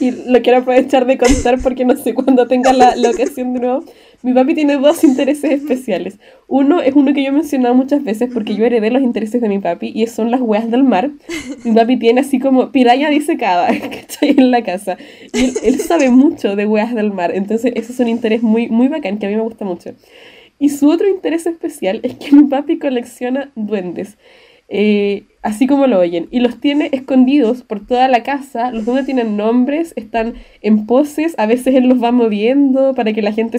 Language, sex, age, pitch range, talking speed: Spanish, female, 10-29, 225-270 Hz, 215 wpm